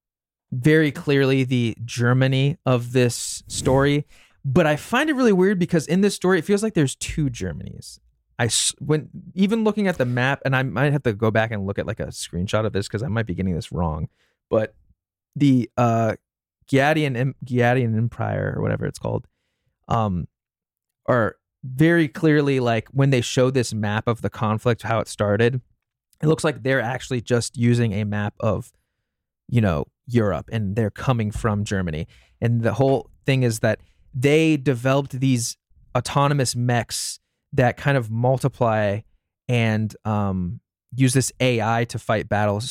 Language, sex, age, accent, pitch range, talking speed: English, male, 20-39, American, 110-135 Hz, 165 wpm